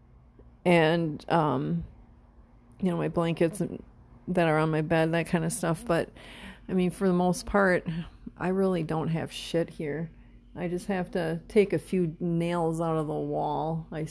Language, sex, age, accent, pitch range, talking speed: English, female, 40-59, American, 155-190 Hz, 175 wpm